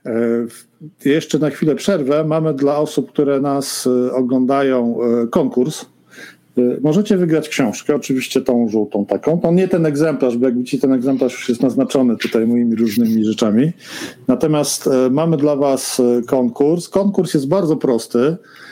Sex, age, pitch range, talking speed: male, 50-69, 130-155 Hz, 140 wpm